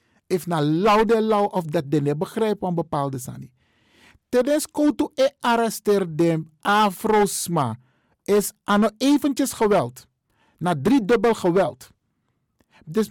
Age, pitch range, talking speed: 50-69, 170-230 Hz, 105 wpm